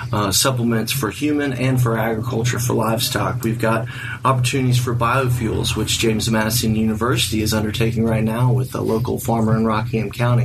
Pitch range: 115-125 Hz